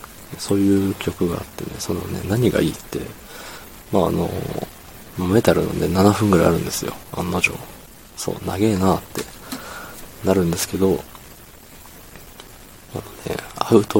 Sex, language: male, Japanese